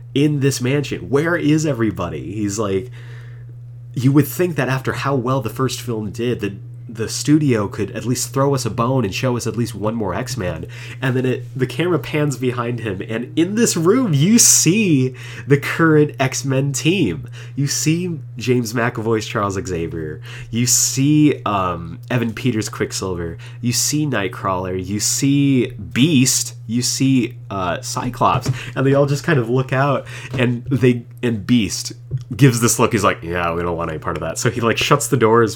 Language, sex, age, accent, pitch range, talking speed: English, male, 30-49, American, 105-130 Hz, 180 wpm